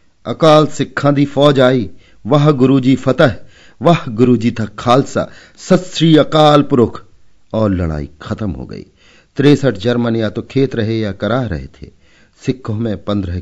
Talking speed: 140 wpm